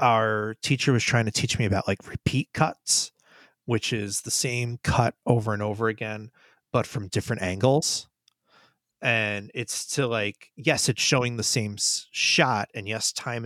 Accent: American